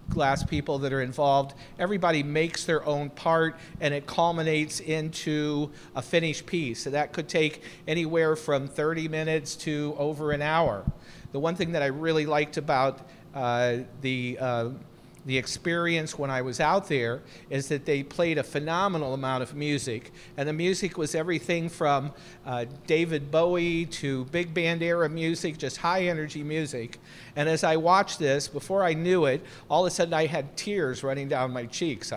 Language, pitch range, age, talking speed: English, 140-170 Hz, 50-69, 175 wpm